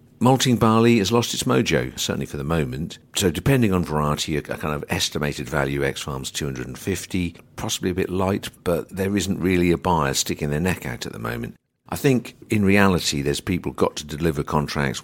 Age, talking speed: 50-69, 195 wpm